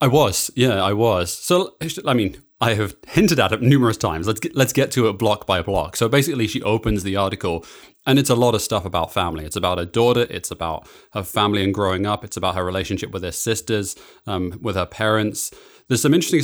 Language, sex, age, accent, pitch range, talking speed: English, male, 30-49, British, 100-115 Hz, 230 wpm